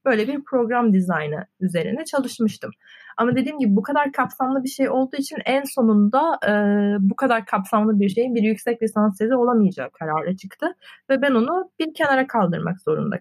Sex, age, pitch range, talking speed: female, 30-49, 190-260 Hz, 175 wpm